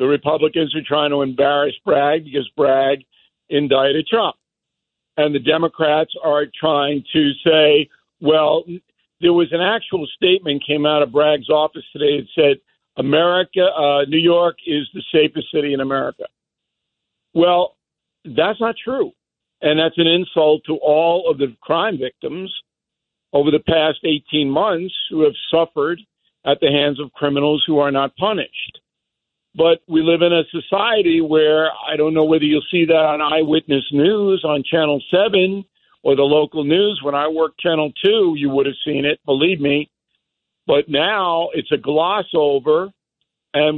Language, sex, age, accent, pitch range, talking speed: English, male, 50-69, American, 145-170 Hz, 160 wpm